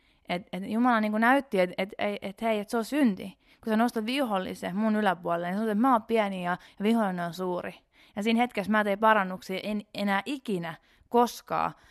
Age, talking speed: 20-39, 200 wpm